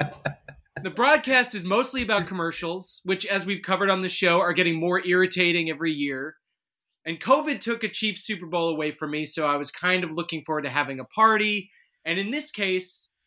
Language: English